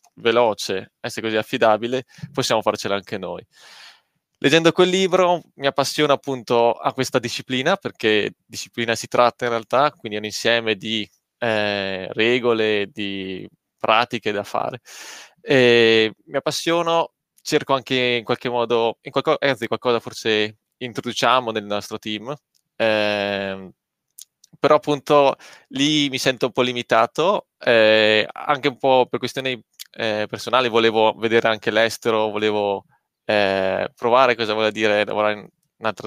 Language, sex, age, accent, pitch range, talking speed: Italian, male, 20-39, native, 105-130 Hz, 135 wpm